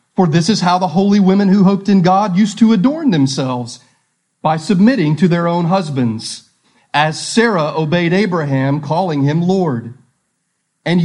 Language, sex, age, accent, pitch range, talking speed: English, male, 40-59, American, 150-200 Hz, 155 wpm